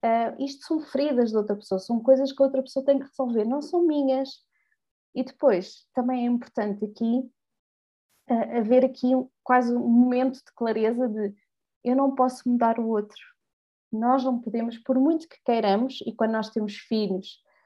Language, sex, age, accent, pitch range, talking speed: Portuguese, female, 20-39, Brazilian, 215-270 Hz, 170 wpm